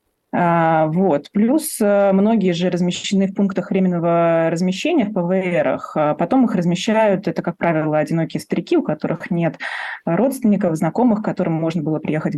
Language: Russian